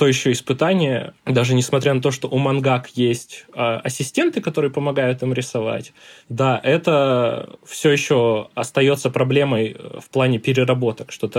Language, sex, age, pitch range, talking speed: Russian, male, 20-39, 125-155 Hz, 150 wpm